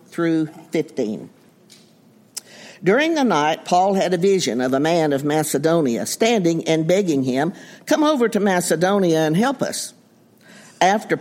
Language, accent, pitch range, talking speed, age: English, American, 155-200 Hz, 140 wpm, 60-79